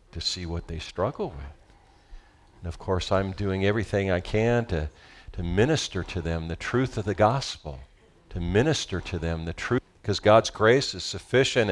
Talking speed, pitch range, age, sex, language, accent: 180 wpm, 90-115 Hz, 50-69, male, English, American